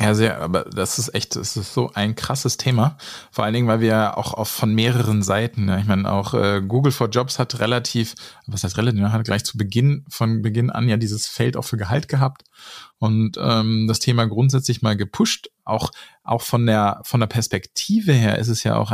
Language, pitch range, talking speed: German, 105-125 Hz, 220 wpm